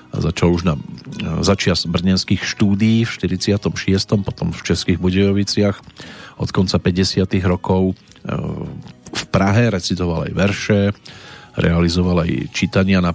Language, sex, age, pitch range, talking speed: Slovak, male, 40-59, 90-100 Hz, 120 wpm